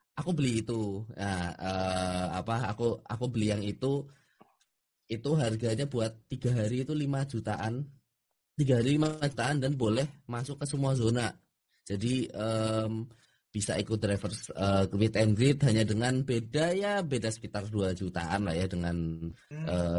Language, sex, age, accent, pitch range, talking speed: Indonesian, male, 20-39, native, 105-135 Hz, 150 wpm